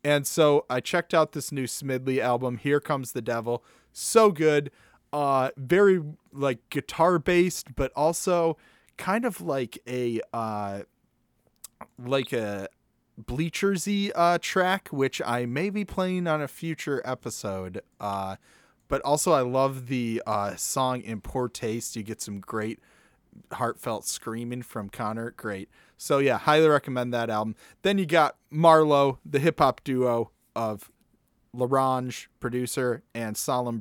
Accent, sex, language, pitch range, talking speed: American, male, English, 115-150 Hz, 140 wpm